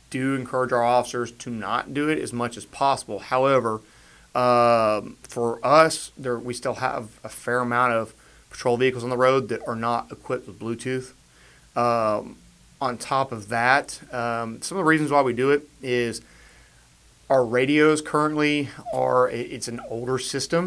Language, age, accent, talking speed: English, 30-49, American, 170 wpm